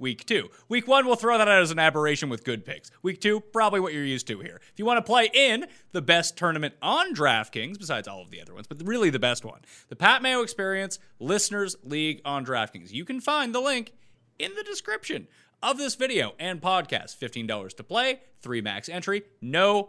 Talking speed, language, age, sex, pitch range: 215 wpm, English, 30-49, male, 135-225 Hz